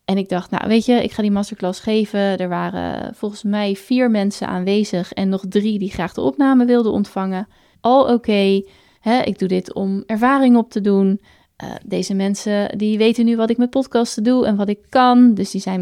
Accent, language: Dutch, Dutch